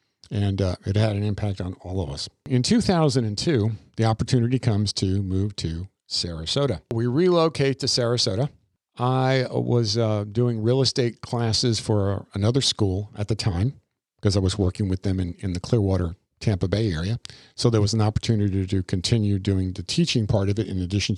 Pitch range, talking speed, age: 105-130 Hz, 180 wpm, 50-69